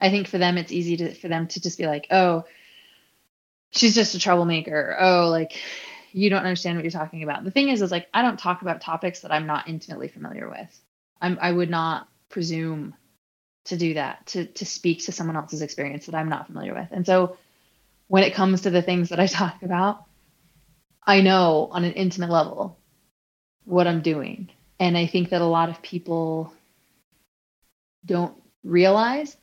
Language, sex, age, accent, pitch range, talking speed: English, female, 20-39, American, 165-190 Hz, 190 wpm